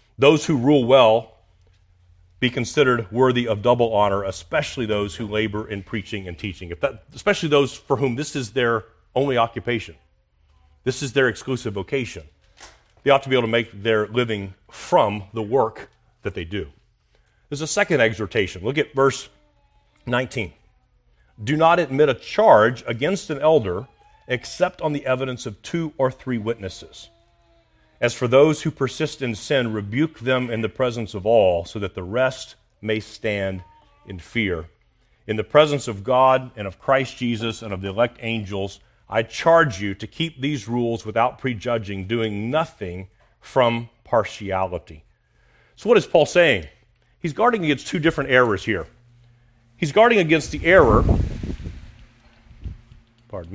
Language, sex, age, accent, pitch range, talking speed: English, male, 40-59, American, 105-130 Hz, 155 wpm